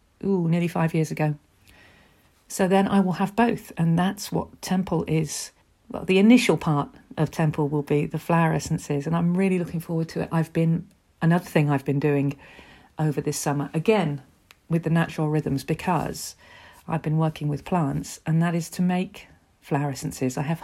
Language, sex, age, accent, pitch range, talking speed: English, female, 50-69, British, 150-180 Hz, 185 wpm